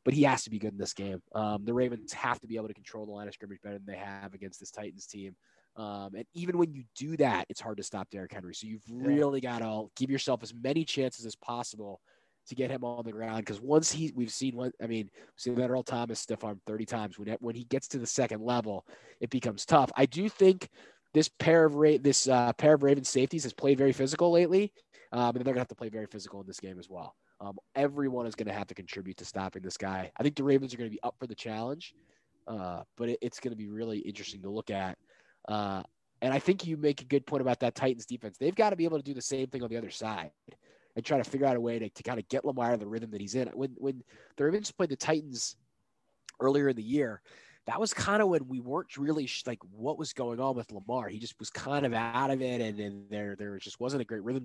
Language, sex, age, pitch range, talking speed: English, male, 20-39, 105-135 Hz, 270 wpm